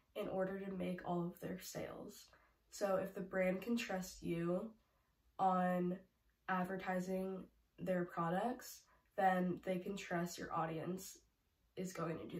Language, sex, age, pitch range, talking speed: English, female, 10-29, 180-210 Hz, 140 wpm